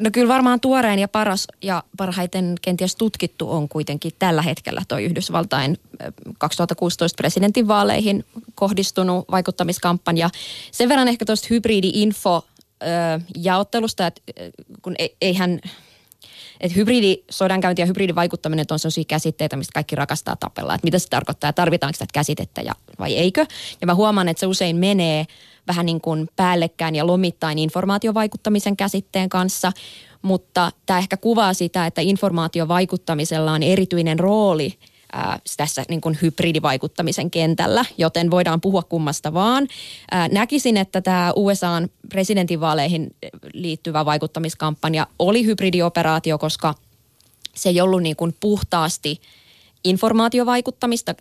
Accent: native